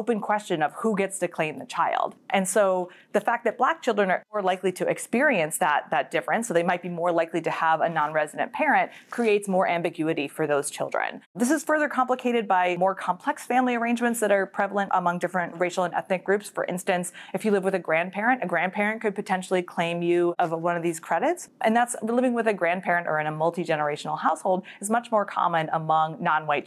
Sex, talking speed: female, 215 wpm